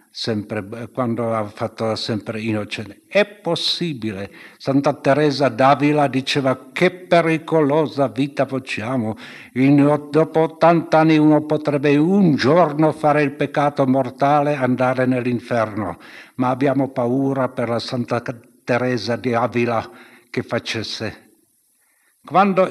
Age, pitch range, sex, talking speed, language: 60-79, 115-145 Hz, male, 110 wpm, Italian